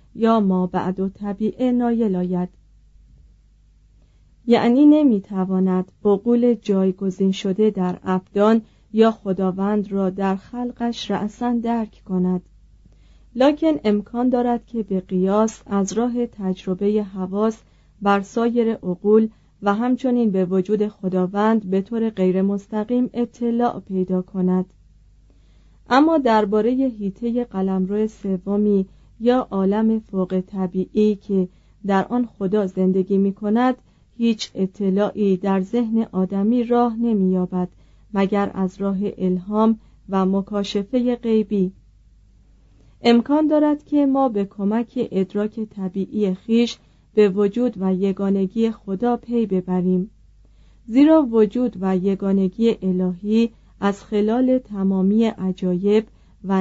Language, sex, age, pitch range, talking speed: Persian, female, 30-49, 190-230 Hz, 110 wpm